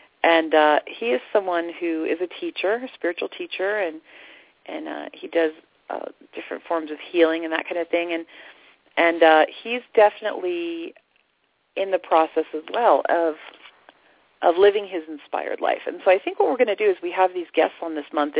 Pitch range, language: 160-235 Hz, English